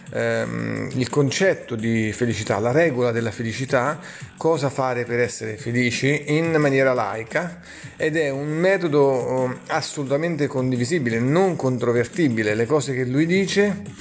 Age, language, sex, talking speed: 30-49, Italian, male, 125 wpm